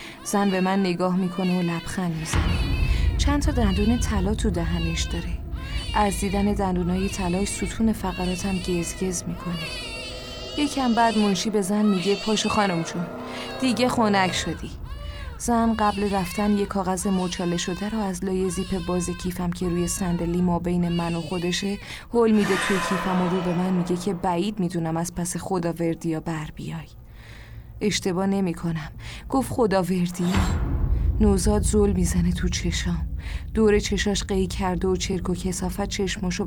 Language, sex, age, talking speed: Persian, female, 30-49, 150 wpm